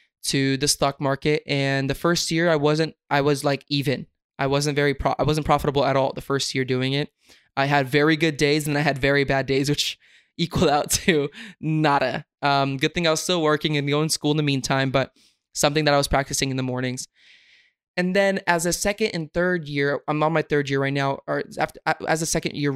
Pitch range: 140-155 Hz